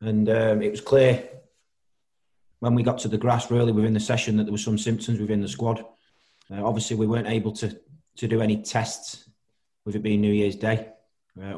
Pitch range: 105-120 Hz